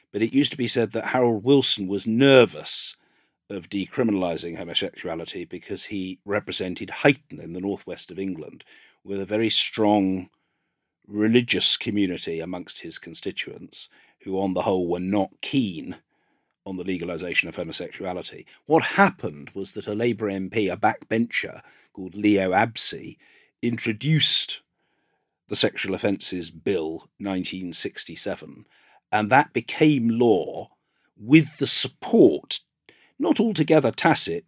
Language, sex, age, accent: English, male, 50-69, British